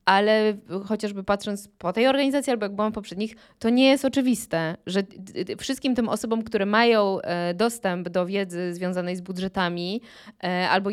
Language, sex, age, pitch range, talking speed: Polish, female, 20-39, 185-220 Hz, 155 wpm